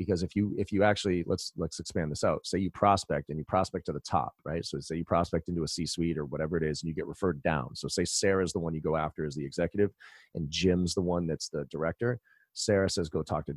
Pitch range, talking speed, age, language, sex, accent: 85-105 Hz, 265 wpm, 30-49, English, male, American